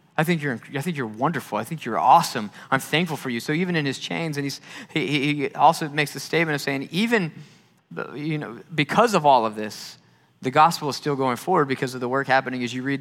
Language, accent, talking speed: English, American, 235 wpm